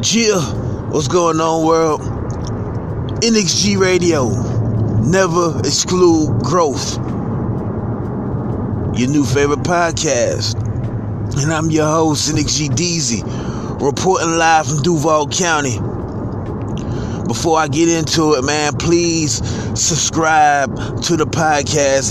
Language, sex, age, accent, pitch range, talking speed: English, male, 30-49, American, 125-165 Hz, 100 wpm